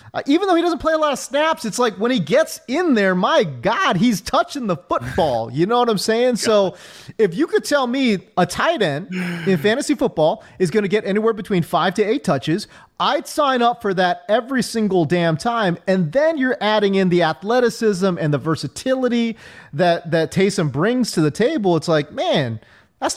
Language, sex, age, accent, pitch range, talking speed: English, male, 30-49, American, 155-235 Hz, 205 wpm